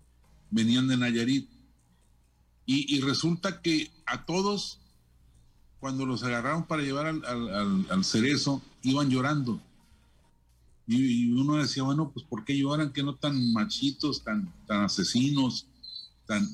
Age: 50-69